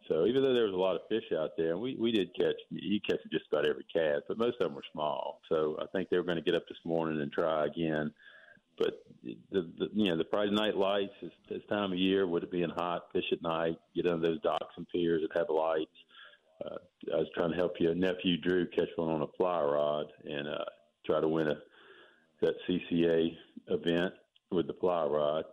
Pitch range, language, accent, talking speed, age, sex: 80-105 Hz, English, American, 235 wpm, 50-69, male